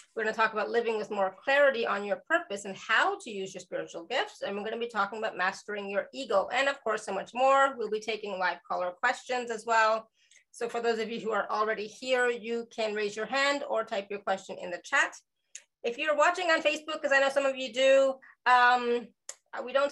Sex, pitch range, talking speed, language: female, 200-255 Hz, 240 wpm, English